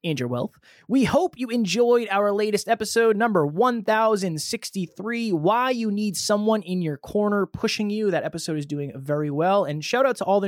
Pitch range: 145-205 Hz